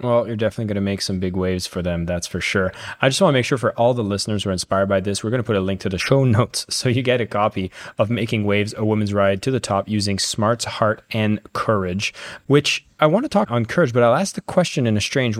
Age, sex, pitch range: 20-39, male, 105-125 Hz